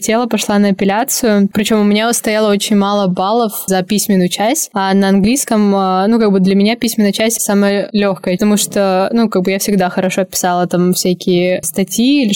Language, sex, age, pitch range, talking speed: Russian, female, 20-39, 195-220 Hz, 185 wpm